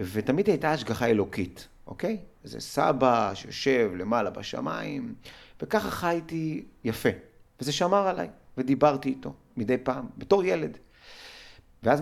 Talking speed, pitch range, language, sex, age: 105 wpm, 105-150 Hz, Hebrew, male, 30-49